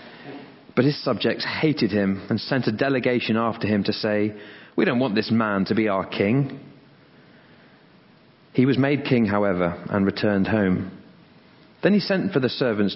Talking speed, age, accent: 165 wpm, 30-49, British